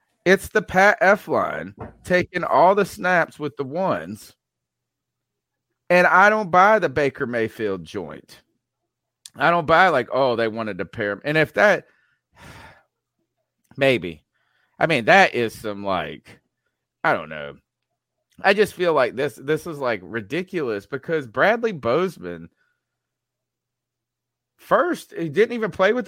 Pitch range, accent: 115-180 Hz, American